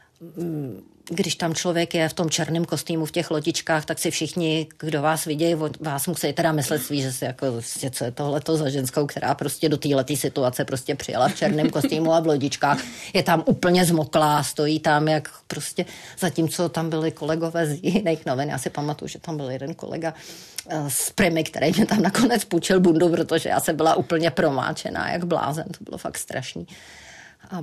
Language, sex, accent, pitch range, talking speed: Czech, female, native, 155-180 Hz, 190 wpm